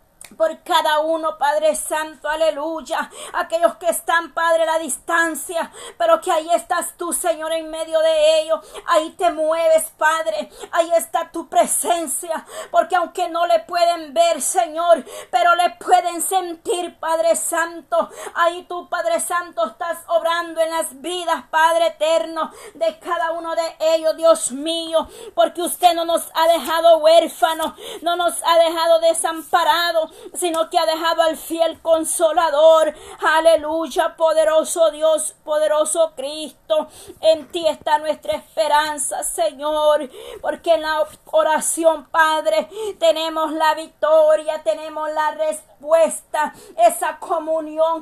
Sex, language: female, Spanish